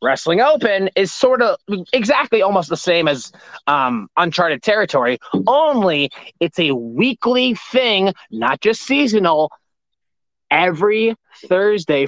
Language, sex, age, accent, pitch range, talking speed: English, male, 20-39, American, 170-230 Hz, 115 wpm